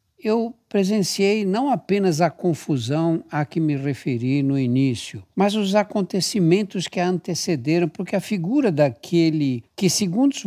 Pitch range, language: 125-180 Hz, Portuguese